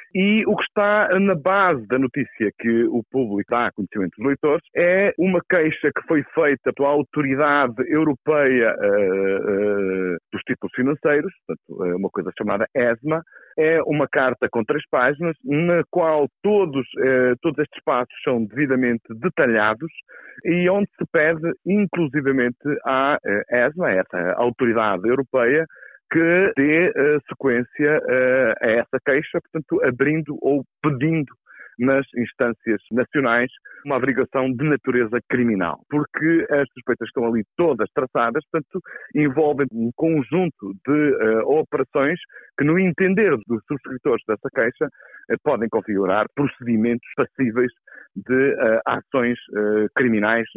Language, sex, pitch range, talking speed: Portuguese, male, 120-165 Hz, 130 wpm